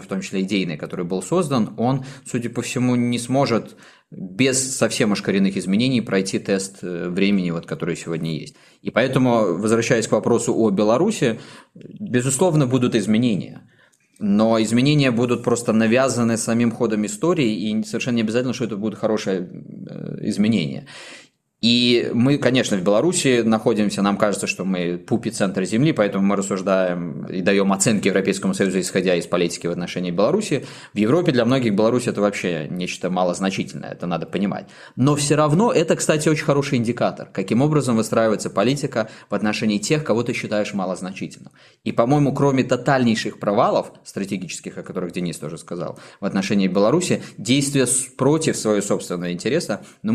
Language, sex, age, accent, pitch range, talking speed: Russian, male, 20-39, native, 100-130 Hz, 155 wpm